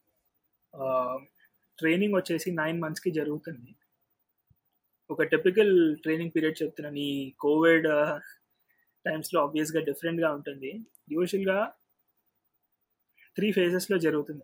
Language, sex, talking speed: Telugu, male, 85 wpm